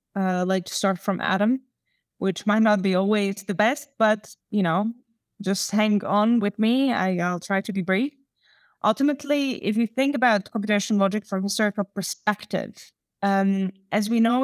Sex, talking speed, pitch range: female, 175 wpm, 190-220 Hz